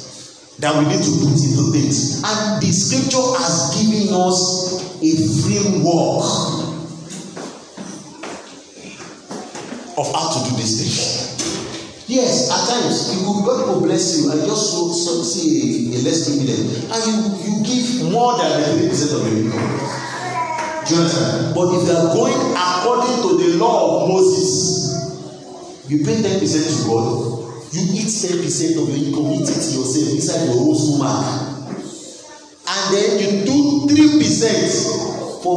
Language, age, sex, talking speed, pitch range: English, 40-59, male, 145 wpm, 140-190 Hz